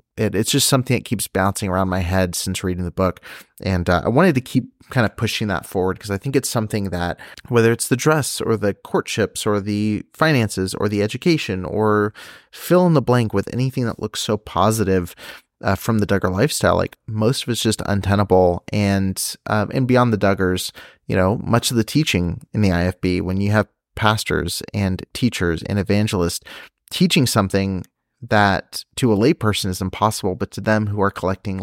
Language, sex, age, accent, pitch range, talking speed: English, male, 30-49, American, 95-115 Hz, 195 wpm